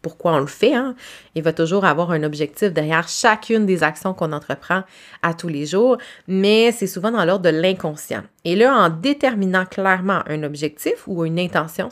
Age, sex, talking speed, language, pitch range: 30-49, female, 190 wpm, French, 165-210 Hz